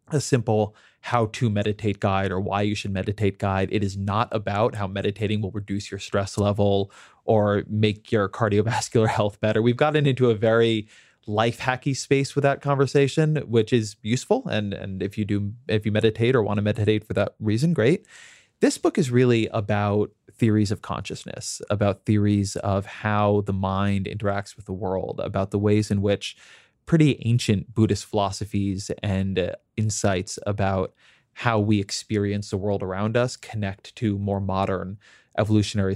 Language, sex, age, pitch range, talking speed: English, male, 20-39, 100-115 Hz, 165 wpm